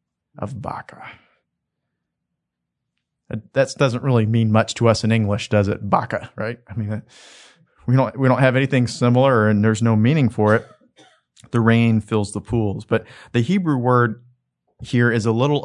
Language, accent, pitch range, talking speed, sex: English, American, 100-125 Hz, 165 wpm, male